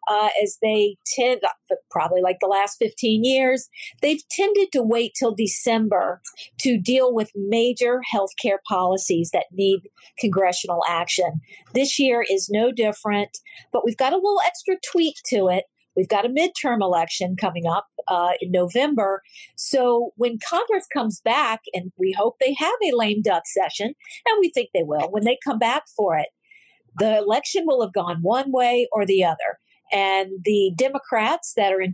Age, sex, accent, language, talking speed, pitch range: 50-69, female, American, English, 175 wpm, 195-265 Hz